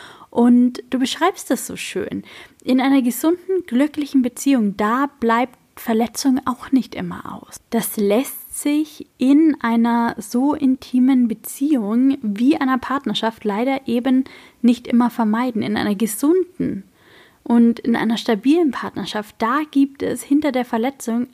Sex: female